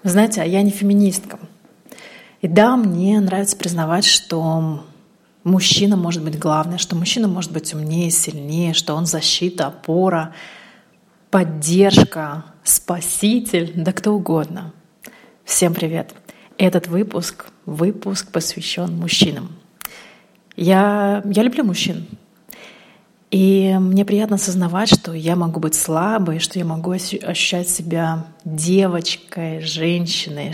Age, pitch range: 30-49, 165-200 Hz